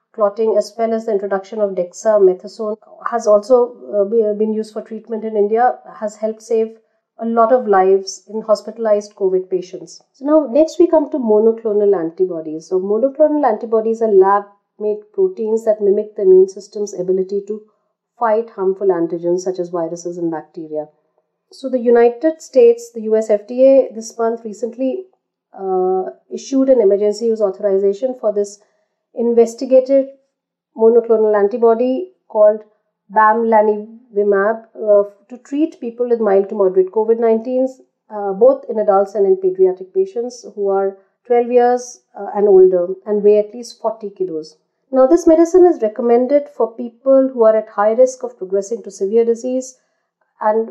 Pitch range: 200-245 Hz